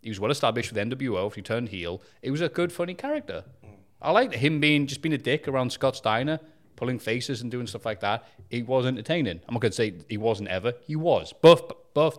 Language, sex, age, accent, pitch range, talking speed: English, male, 30-49, British, 115-160 Hz, 230 wpm